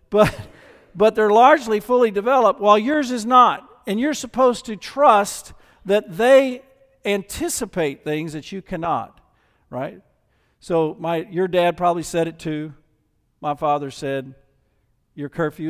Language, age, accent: English, 50-69, American